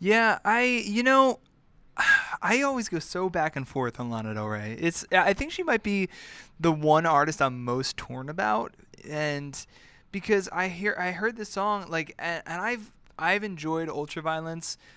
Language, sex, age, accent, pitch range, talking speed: English, male, 20-39, American, 125-175 Hz, 170 wpm